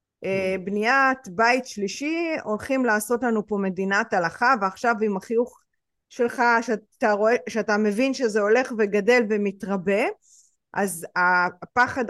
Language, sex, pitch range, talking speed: Hebrew, female, 210-265 Hz, 115 wpm